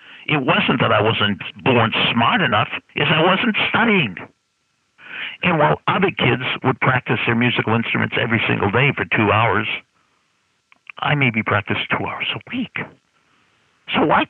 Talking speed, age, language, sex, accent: 150 wpm, 60-79, English, male, American